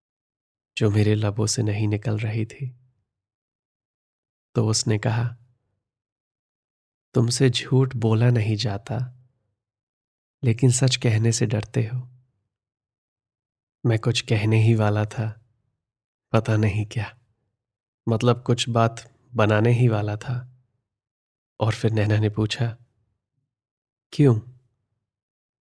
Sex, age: male, 20-39